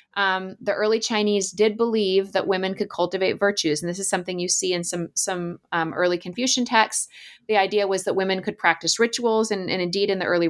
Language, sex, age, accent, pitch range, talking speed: English, female, 20-39, American, 170-220 Hz, 215 wpm